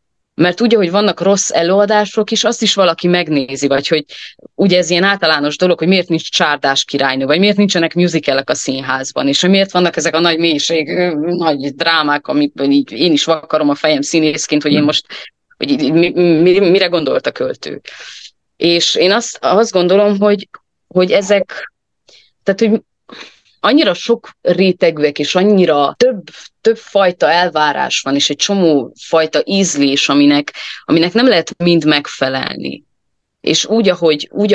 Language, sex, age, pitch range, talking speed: Hungarian, female, 30-49, 150-195 Hz, 155 wpm